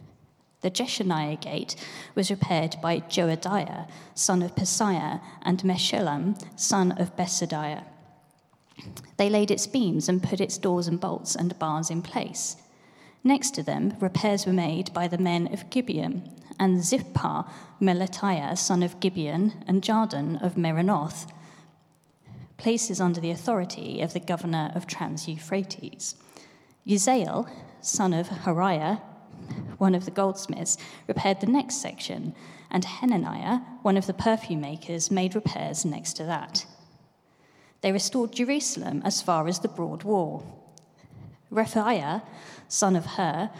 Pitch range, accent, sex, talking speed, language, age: 170-205 Hz, British, female, 130 wpm, English, 30-49